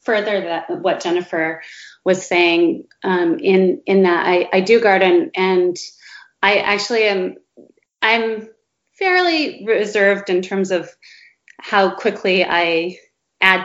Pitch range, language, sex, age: 180-215 Hz, English, female, 30-49